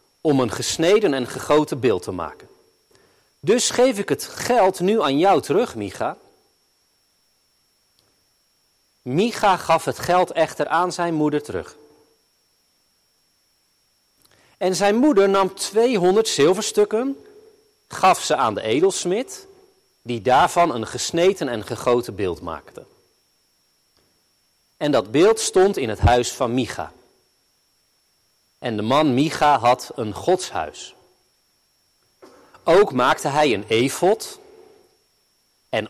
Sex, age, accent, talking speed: male, 40-59, Dutch, 115 wpm